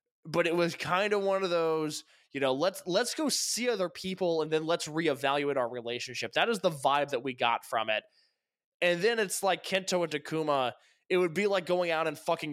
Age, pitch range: 20-39, 140-185 Hz